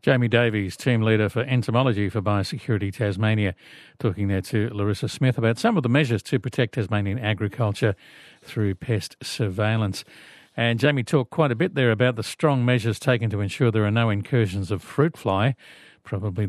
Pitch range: 105-130 Hz